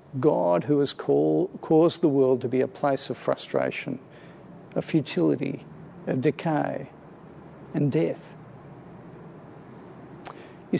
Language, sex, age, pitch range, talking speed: English, male, 50-69, 150-195 Hz, 105 wpm